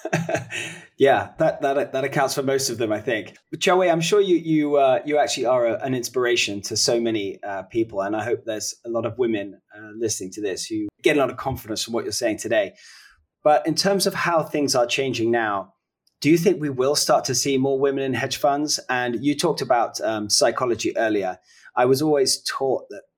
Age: 20-39